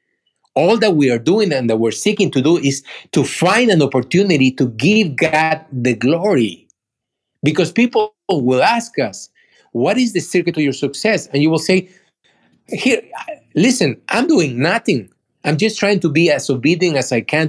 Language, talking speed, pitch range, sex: English, 180 wpm, 130-175 Hz, male